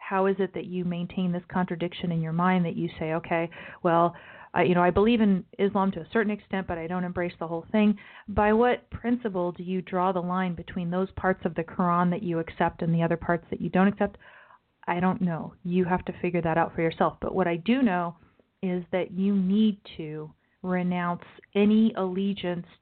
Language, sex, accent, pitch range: English, female, American, 170-195 Hz